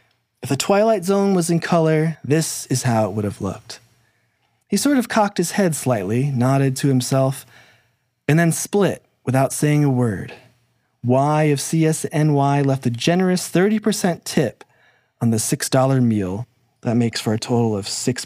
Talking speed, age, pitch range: 165 wpm, 20-39, 115-155 Hz